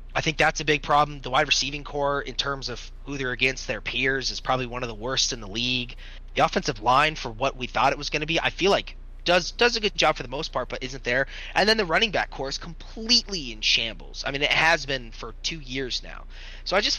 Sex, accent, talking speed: male, American, 270 wpm